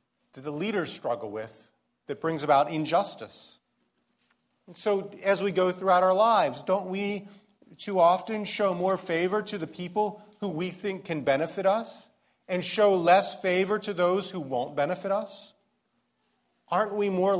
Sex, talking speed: male, 160 wpm